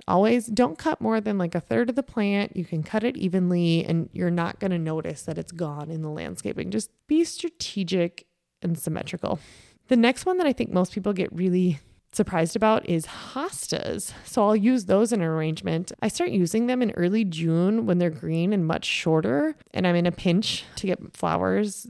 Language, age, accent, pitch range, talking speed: English, 20-39, American, 170-220 Hz, 205 wpm